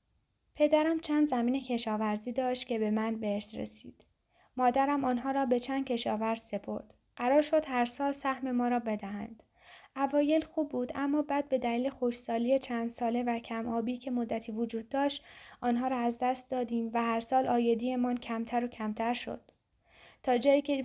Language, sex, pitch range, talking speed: Persian, female, 230-270 Hz, 165 wpm